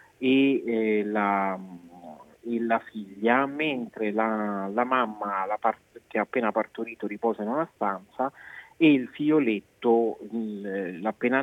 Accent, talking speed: native, 110 wpm